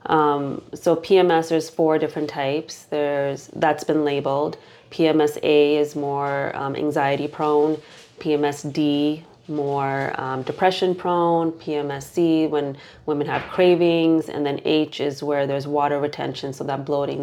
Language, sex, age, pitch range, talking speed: English, female, 30-49, 145-160 Hz, 145 wpm